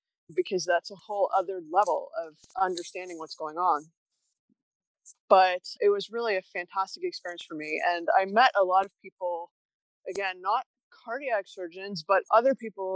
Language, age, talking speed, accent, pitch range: English, 20-39, 160 wpm, American, 175-210 Hz